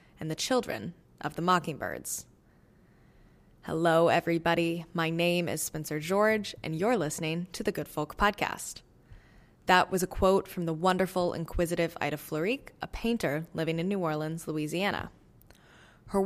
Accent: American